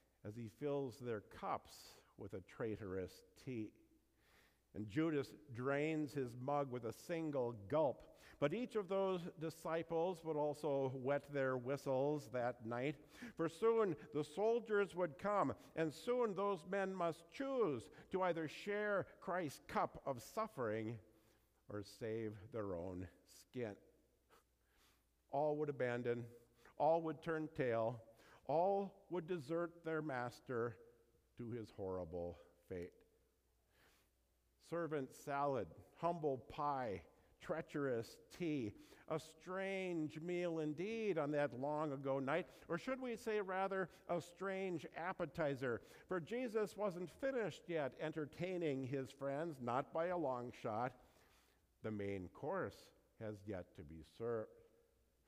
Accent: American